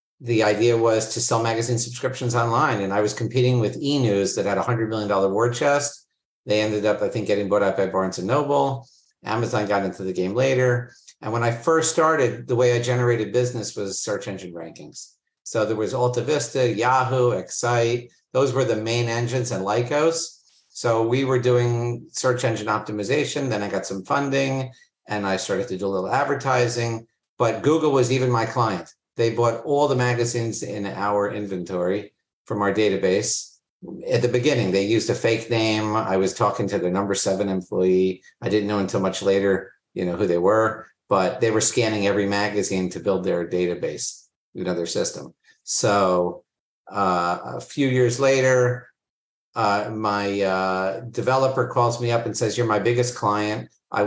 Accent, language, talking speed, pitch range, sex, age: American, English, 180 wpm, 100-125 Hz, male, 50-69